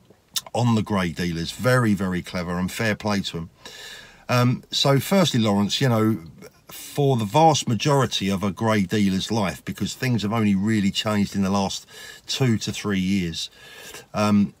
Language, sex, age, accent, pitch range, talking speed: English, male, 50-69, British, 95-115 Hz, 170 wpm